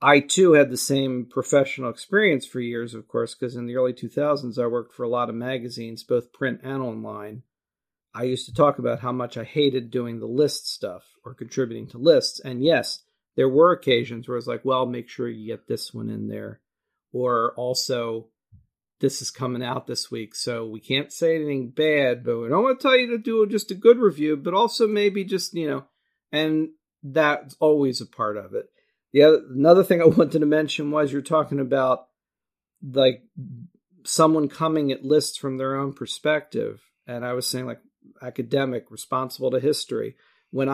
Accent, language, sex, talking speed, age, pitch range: American, English, male, 195 wpm, 40-59, 125-150 Hz